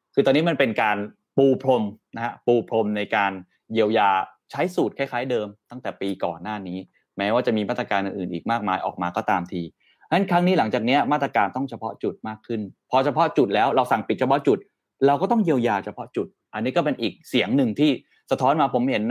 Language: Thai